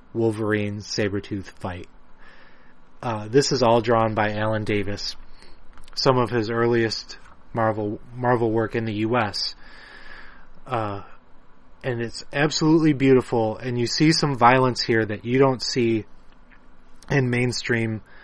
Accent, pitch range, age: American, 105-130 Hz, 30-49